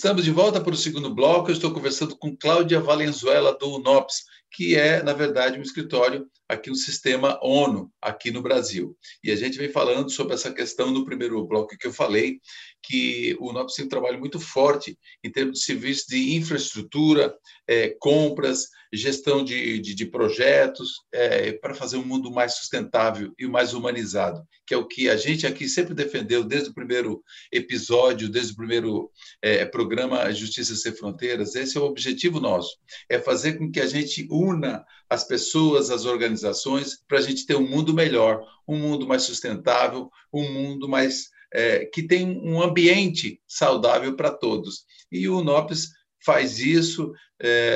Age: 50-69